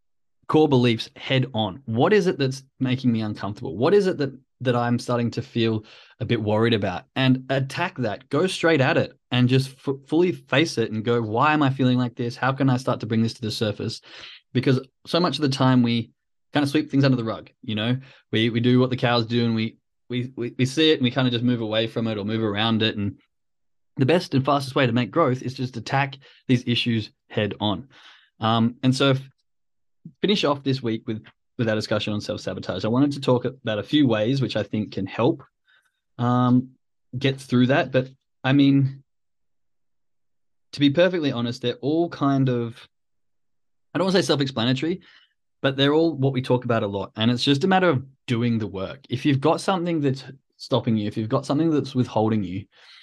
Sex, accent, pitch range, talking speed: male, Australian, 115-140 Hz, 220 wpm